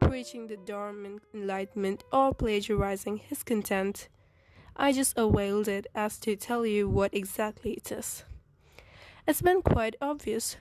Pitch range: 210-245 Hz